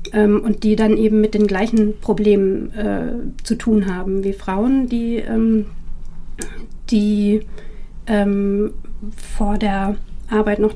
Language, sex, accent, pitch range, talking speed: German, female, German, 210-230 Hz, 115 wpm